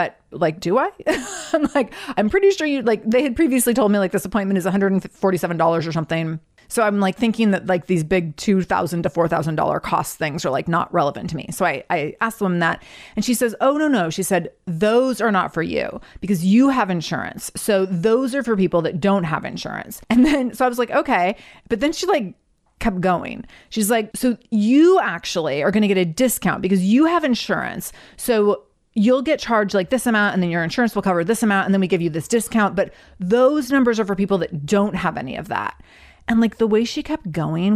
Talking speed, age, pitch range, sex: 225 wpm, 30-49, 180-240 Hz, female